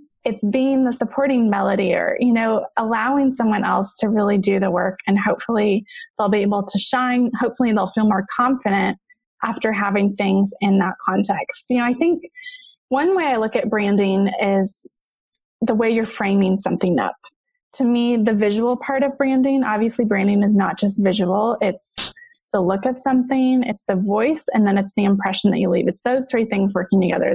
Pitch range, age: 205-265 Hz, 20-39